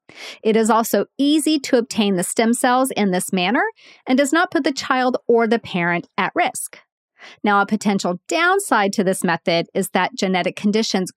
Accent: American